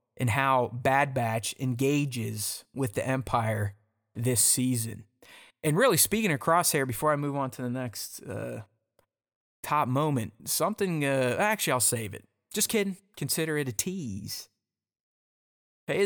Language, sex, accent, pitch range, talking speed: English, male, American, 125-155 Hz, 140 wpm